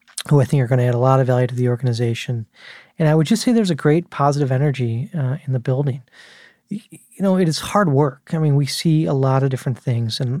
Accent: American